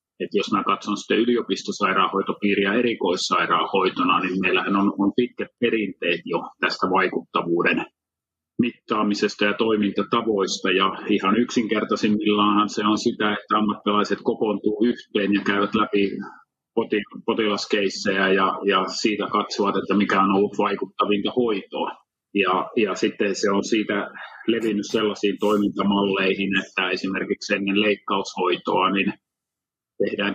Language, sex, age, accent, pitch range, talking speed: English, male, 30-49, Finnish, 95-105 Hz, 115 wpm